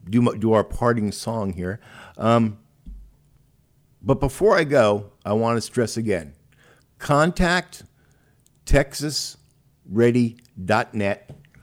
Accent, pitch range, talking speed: American, 100-135 Hz, 95 wpm